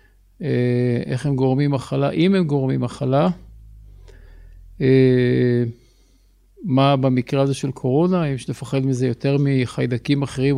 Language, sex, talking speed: Hebrew, male, 115 wpm